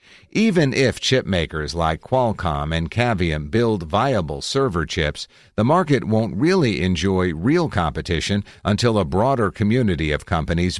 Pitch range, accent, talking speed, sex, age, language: 85-110 Hz, American, 140 wpm, male, 50-69, English